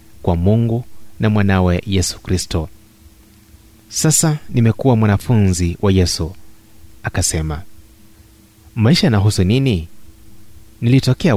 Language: Swahili